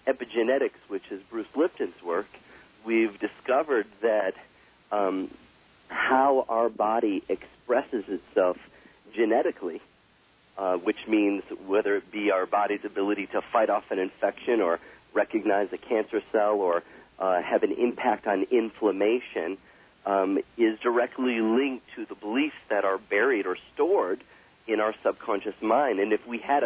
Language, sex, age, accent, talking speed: English, male, 40-59, American, 140 wpm